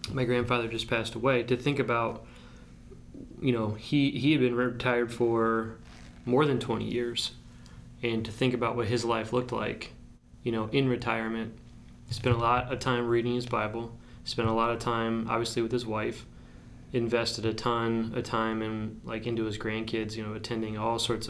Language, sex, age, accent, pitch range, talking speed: English, male, 20-39, American, 110-120 Hz, 185 wpm